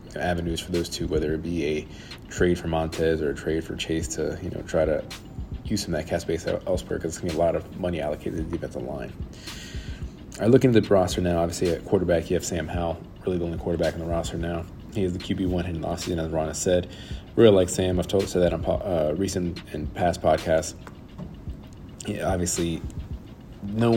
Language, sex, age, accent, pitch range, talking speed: English, male, 30-49, American, 85-90 Hz, 225 wpm